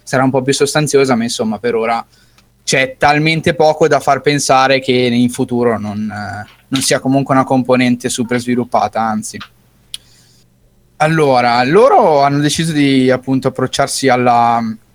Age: 20-39